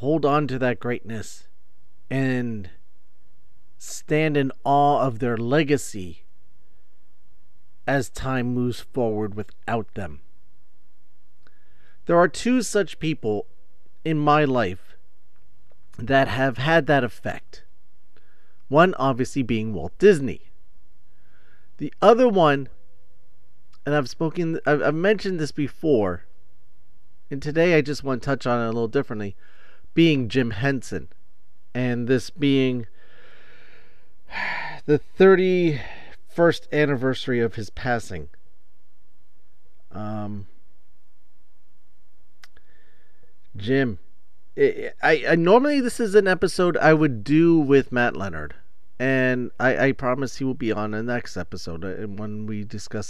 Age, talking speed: 40-59, 115 wpm